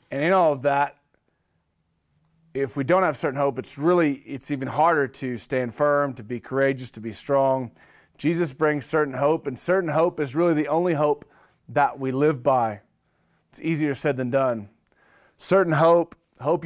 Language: English